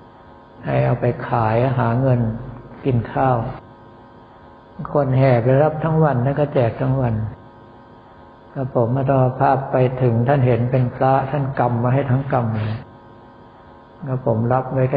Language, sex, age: Thai, male, 60-79